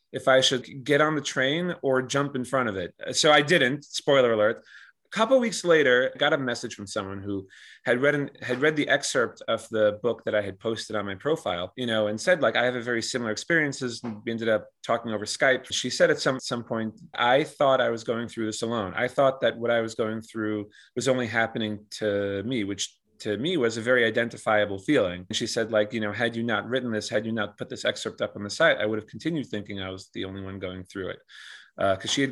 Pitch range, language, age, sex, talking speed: 105-130 Hz, English, 30-49, male, 255 wpm